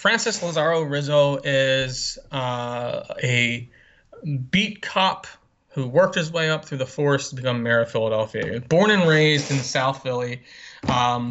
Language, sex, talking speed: English, male, 150 wpm